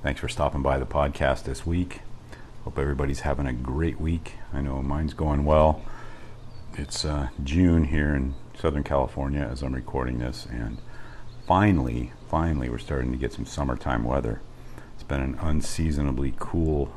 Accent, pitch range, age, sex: American, 65-90 Hz, 50-69, male